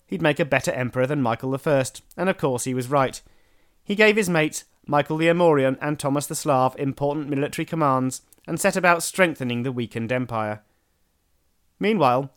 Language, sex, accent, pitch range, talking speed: English, male, British, 125-170 Hz, 175 wpm